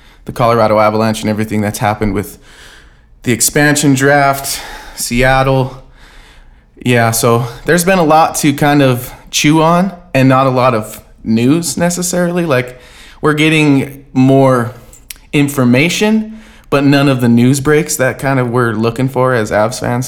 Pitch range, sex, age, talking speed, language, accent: 110-135 Hz, male, 20-39, 150 wpm, English, American